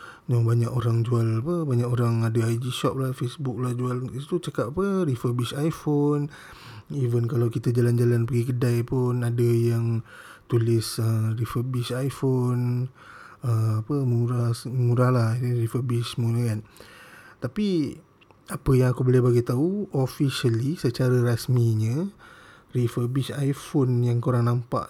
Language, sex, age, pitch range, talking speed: Malay, male, 20-39, 120-135 Hz, 130 wpm